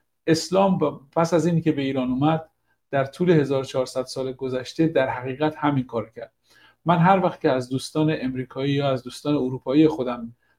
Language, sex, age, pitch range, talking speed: Persian, male, 50-69, 125-155 Hz, 170 wpm